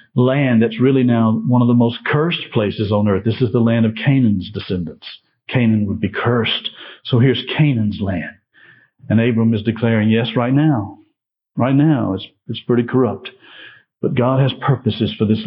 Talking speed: 180 wpm